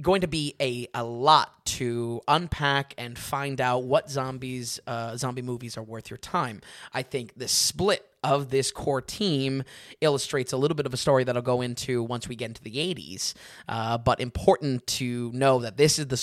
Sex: male